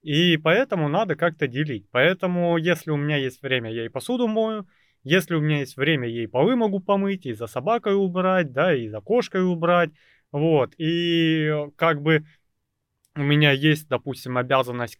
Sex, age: male, 20-39